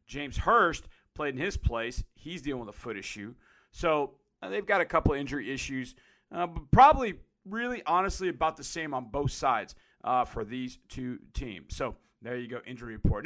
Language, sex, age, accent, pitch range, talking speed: English, male, 40-59, American, 140-215 Hz, 185 wpm